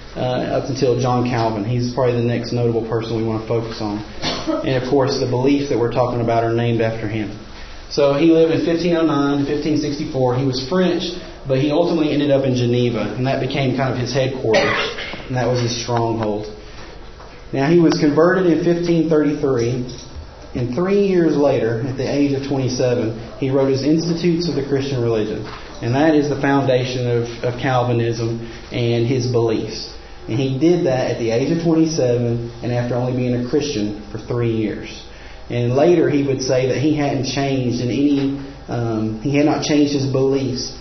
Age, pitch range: 30-49, 115-145 Hz